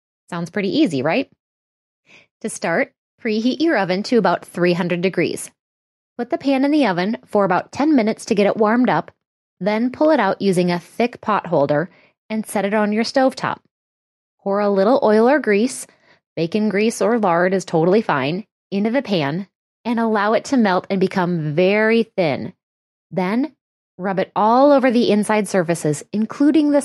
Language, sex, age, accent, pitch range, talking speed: English, female, 20-39, American, 185-245 Hz, 175 wpm